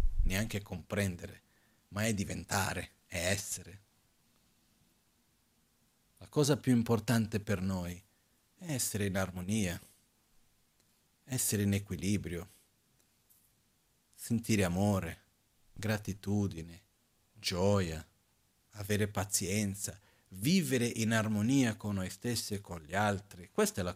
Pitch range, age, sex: 95-115 Hz, 40-59, male